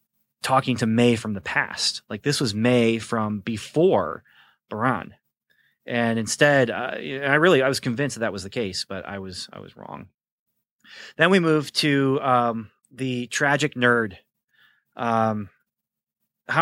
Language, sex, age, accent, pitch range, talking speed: English, male, 30-49, American, 105-125 Hz, 150 wpm